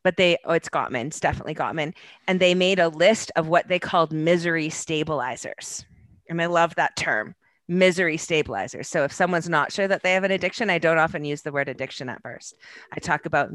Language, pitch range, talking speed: English, 145-180 Hz, 215 wpm